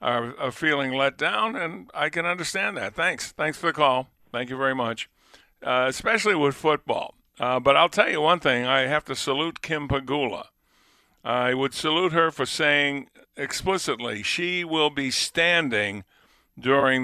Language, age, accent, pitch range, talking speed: English, 50-69, American, 120-150 Hz, 165 wpm